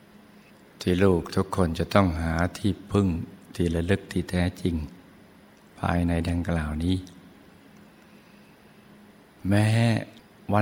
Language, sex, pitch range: Thai, male, 85-100 Hz